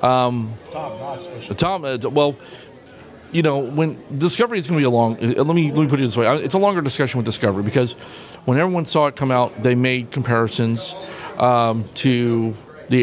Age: 40-59